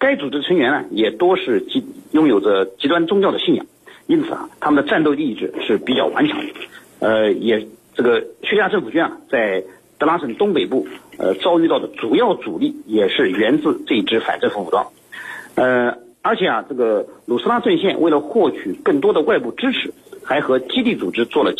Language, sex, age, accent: Chinese, male, 50-69, native